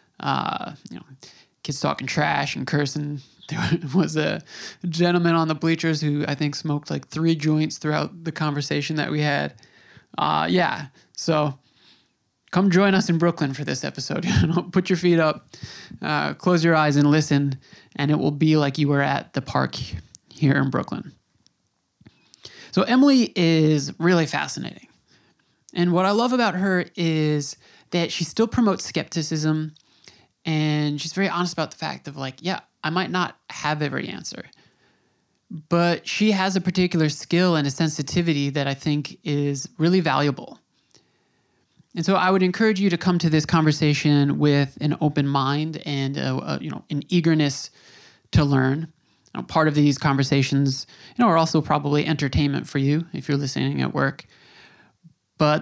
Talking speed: 165 wpm